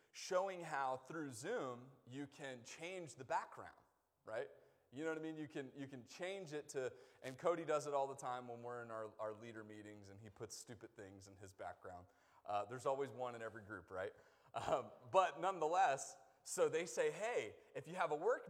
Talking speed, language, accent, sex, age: 210 wpm, English, American, male, 30-49